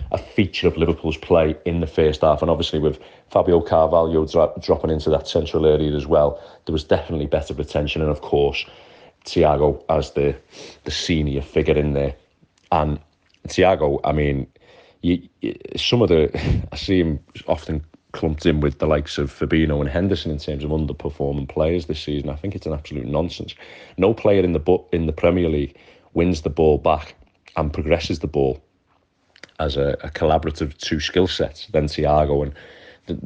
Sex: male